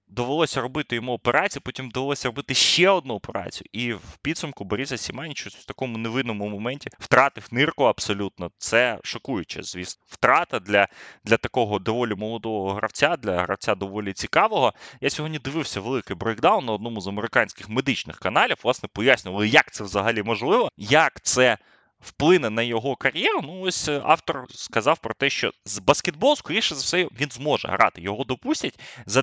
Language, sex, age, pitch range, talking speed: Ukrainian, male, 20-39, 105-140 Hz, 160 wpm